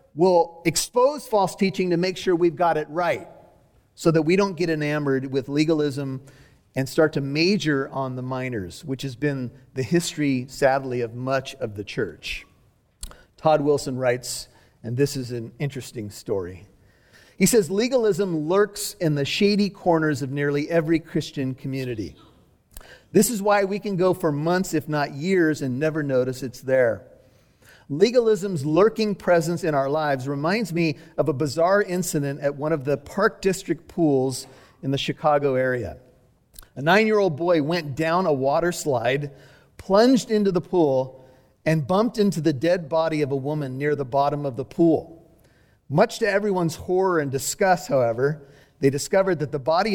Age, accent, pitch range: 40-59, American, 135-180 Hz